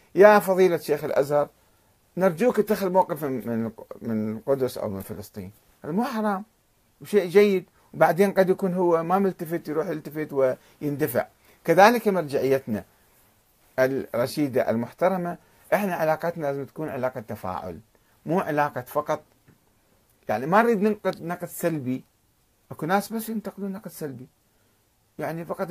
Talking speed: 125 wpm